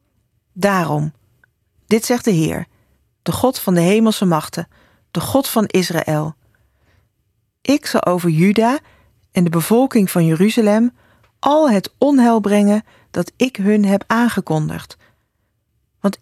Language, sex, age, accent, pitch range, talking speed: Dutch, female, 40-59, Dutch, 155-215 Hz, 125 wpm